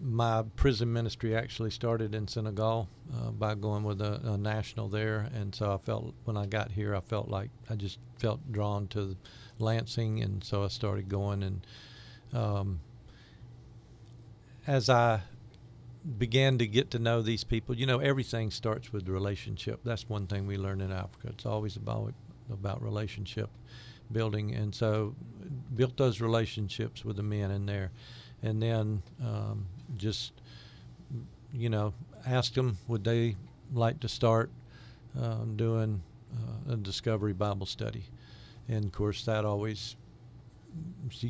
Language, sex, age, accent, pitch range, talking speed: English, male, 50-69, American, 105-120 Hz, 150 wpm